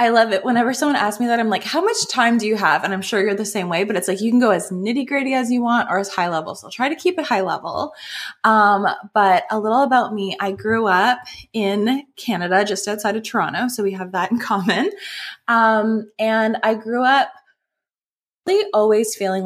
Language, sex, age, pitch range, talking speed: English, female, 20-39, 185-225 Hz, 230 wpm